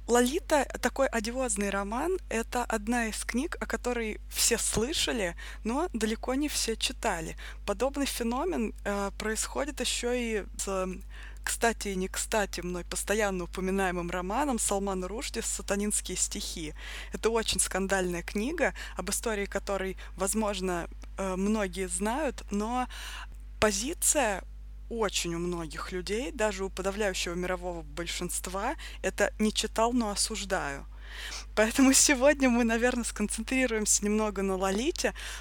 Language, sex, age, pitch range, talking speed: Russian, female, 20-39, 195-245 Hz, 125 wpm